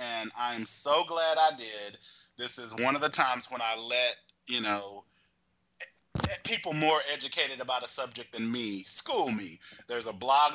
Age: 30-49